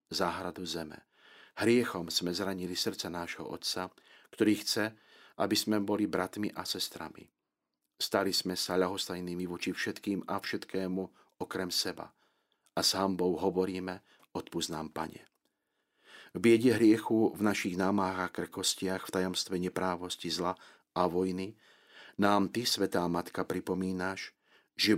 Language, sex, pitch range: Slovak, male, 90-105 Hz